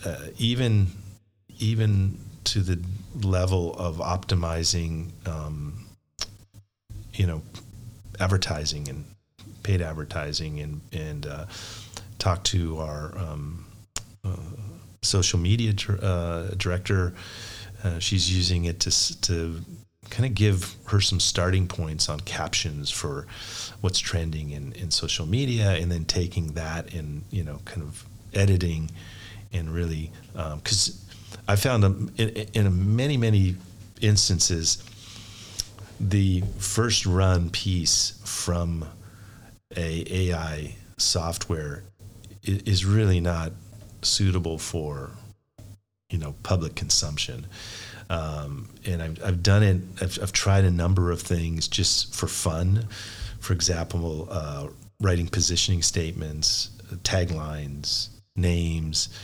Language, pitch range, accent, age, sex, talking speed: English, 85-105 Hz, American, 40-59, male, 110 wpm